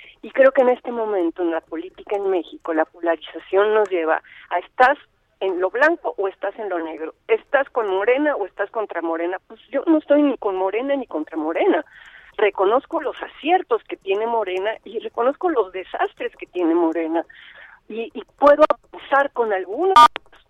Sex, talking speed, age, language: female, 180 wpm, 40-59, Spanish